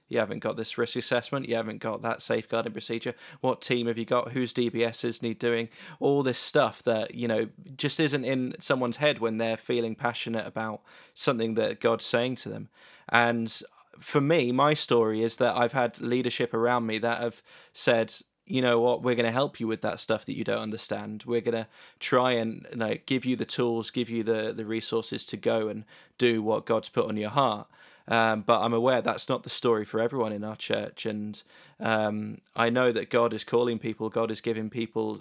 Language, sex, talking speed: English, male, 215 wpm